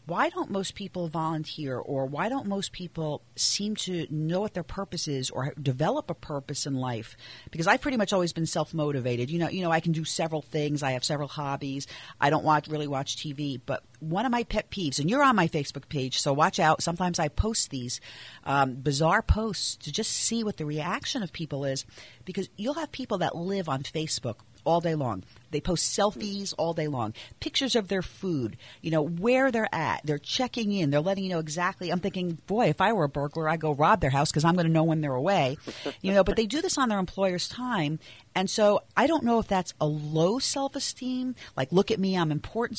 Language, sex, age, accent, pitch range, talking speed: English, female, 40-59, American, 150-200 Hz, 225 wpm